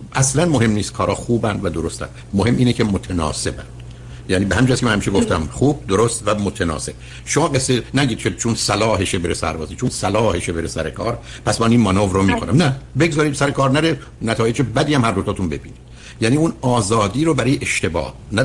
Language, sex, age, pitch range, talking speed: Persian, male, 60-79, 95-130 Hz, 190 wpm